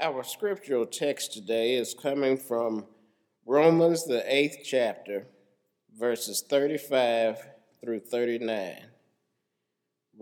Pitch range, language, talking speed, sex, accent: 105-165 Hz, English, 90 wpm, male, American